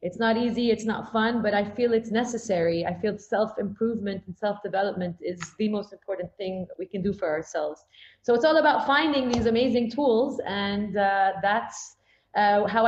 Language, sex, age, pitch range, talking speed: English, female, 30-49, 205-245 Hz, 185 wpm